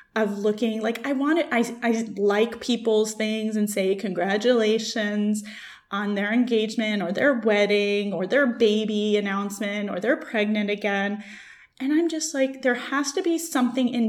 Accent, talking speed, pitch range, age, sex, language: American, 160 wpm, 215-270 Hz, 20-39, female, English